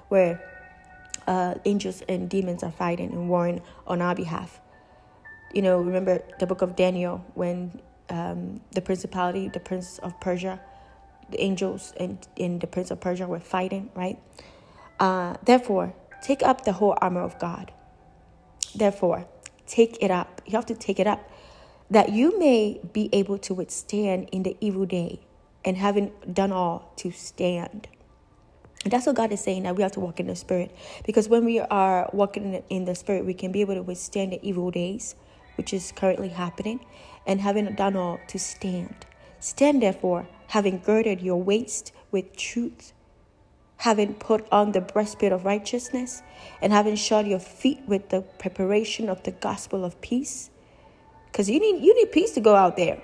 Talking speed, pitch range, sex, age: 170 wpm, 185-220 Hz, female, 20-39